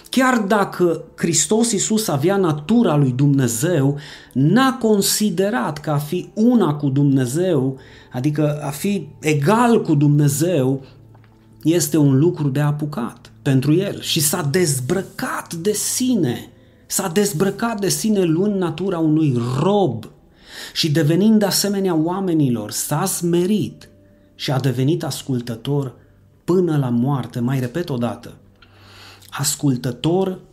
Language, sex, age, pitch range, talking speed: Romanian, male, 30-49, 130-195 Hz, 120 wpm